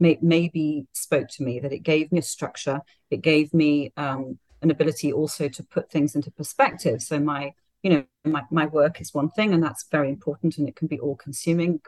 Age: 40-59